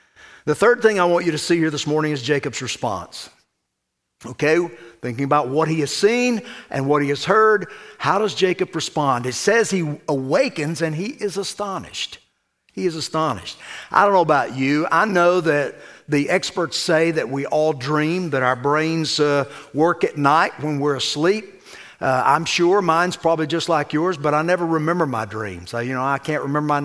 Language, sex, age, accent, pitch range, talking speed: English, male, 50-69, American, 140-180 Hz, 195 wpm